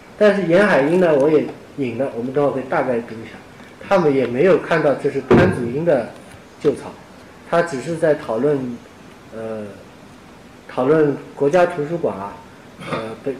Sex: male